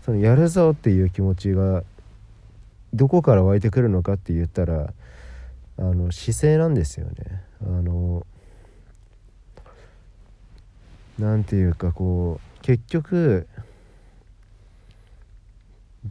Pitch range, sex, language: 90-115 Hz, male, Japanese